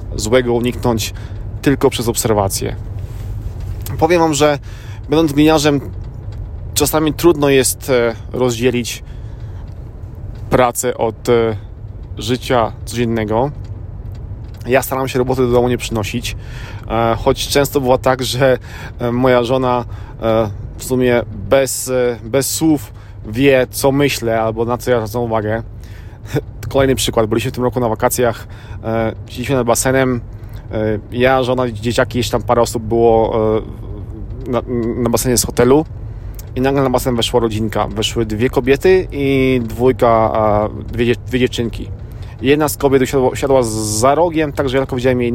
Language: Polish